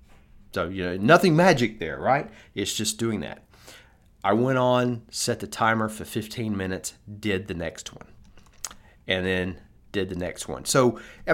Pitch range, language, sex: 90-120 Hz, English, male